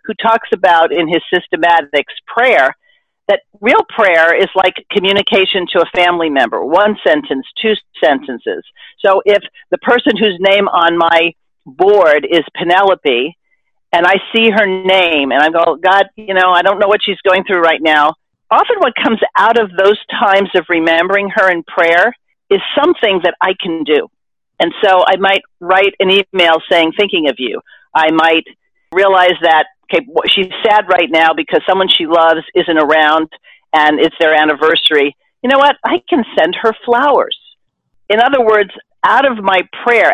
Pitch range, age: 170-220 Hz, 50-69